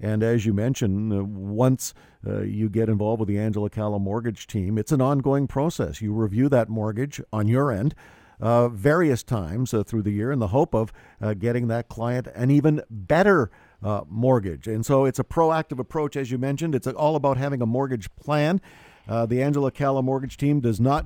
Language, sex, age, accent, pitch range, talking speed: English, male, 50-69, American, 110-145 Hz, 185 wpm